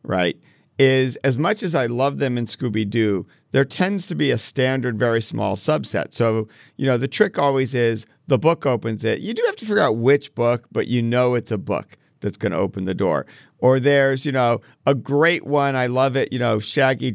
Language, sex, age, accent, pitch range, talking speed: English, male, 50-69, American, 115-145 Hz, 220 wpm